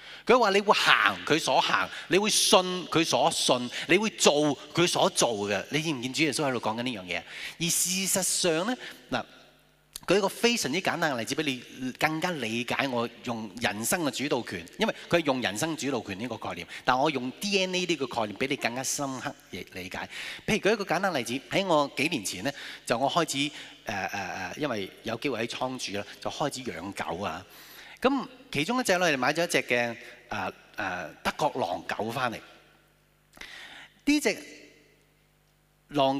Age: 30-49